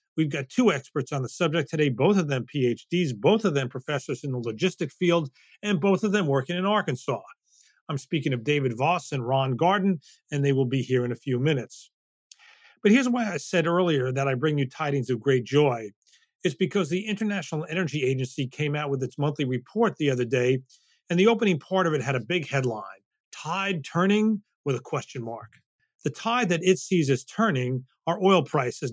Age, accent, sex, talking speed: 40-59, American, male, 205 wpm